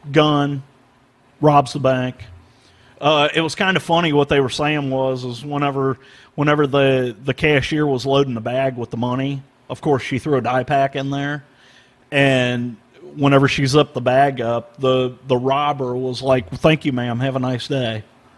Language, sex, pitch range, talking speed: English, male, 125-155 Hz, 185 wpm